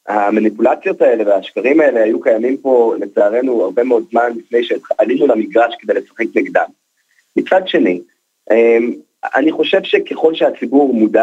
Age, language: 30-49, Hebrew